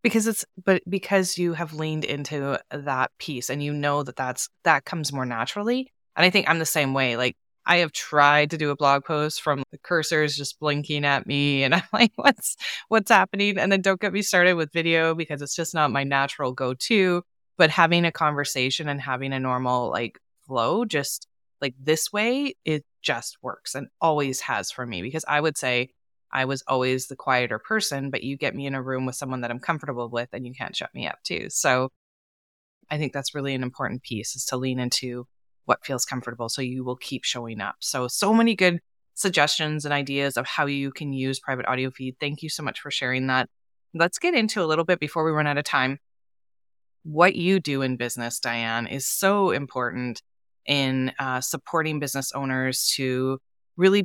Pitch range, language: 130-160 Hz, English